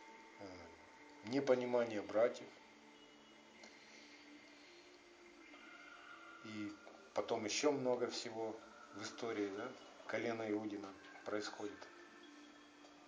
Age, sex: 50-69, male